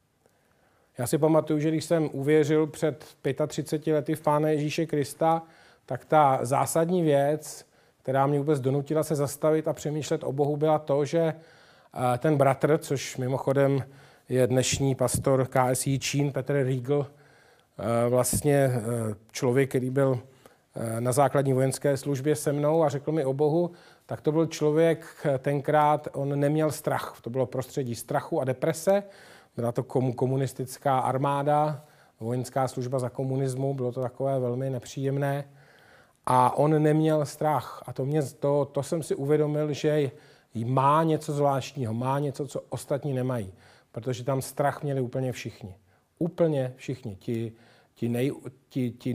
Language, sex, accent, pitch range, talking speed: Czech, male, native, 130-150 Hz, 140 wpm